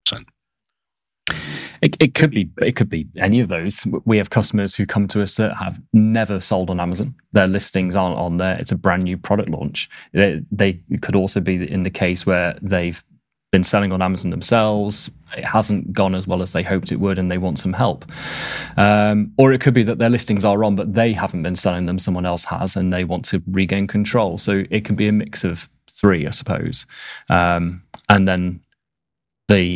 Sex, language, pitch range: male, English, 90-105 Hz